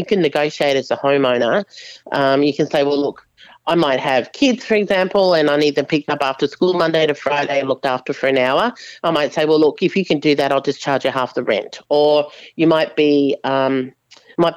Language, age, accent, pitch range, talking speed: English, 40-59, Australian, 140-175 Hz, 235 wpm